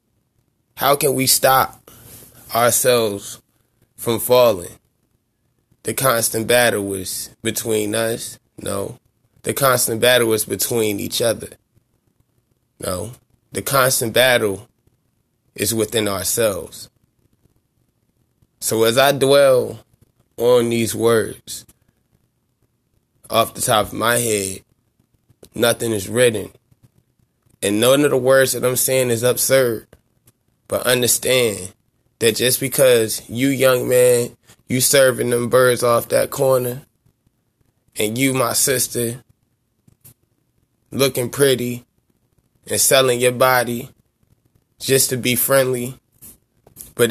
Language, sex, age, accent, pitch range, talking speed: English, male, 20-39, American, 115-125 Hz, 105 wpm